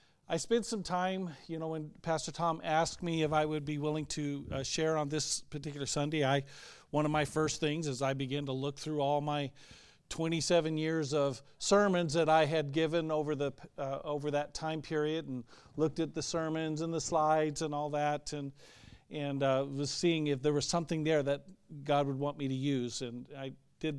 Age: 50-69